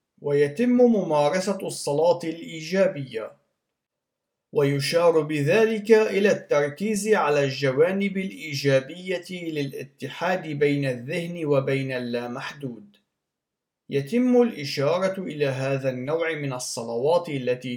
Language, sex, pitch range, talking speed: Arabic, male, 135-195 Hz, 80 wpm